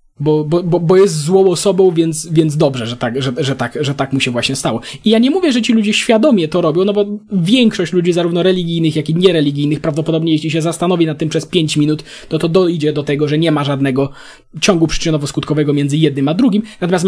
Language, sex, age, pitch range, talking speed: Polish, male, 20-39, 150-200 Hz, 230 wpm